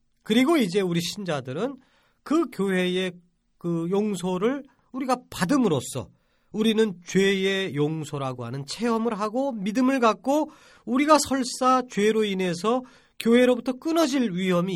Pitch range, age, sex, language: 150-250 Hz, 40-59, male, Korean